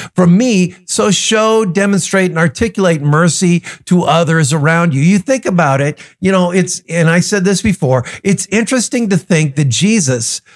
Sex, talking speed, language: male, 170 wpm, English